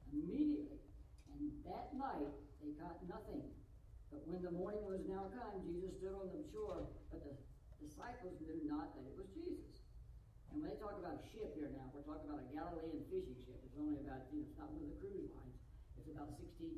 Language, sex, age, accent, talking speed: English, female, 60-79, American, 205 wpm